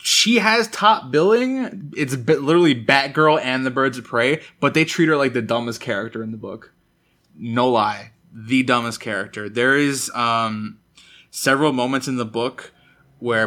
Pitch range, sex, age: 115-140 Hz, male, 20-39